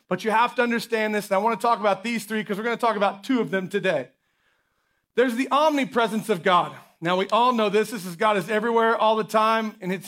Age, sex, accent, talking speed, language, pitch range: 40-59, male, American, 260 wpm, English, 190-225 Hz